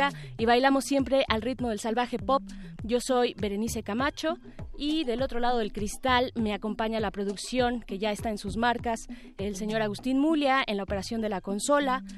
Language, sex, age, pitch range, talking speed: Spanish, female, 20-39, 210-260 Hz, 185 wpm